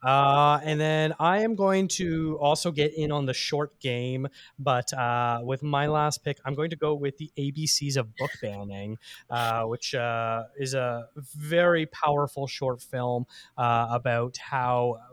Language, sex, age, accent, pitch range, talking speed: English, male, 30-49, American, 120-150 Hz, 165 wpm